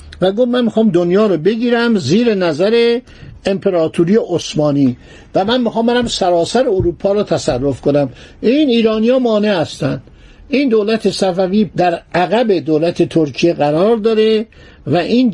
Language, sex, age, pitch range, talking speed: Persian, male, 60-79, 175-230 Hz, 140 wpm